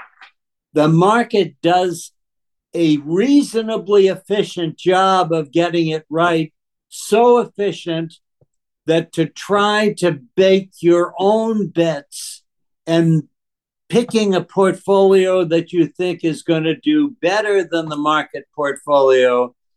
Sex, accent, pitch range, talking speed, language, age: male, American, 140-180 Hz, 110 wpm, English, 60-79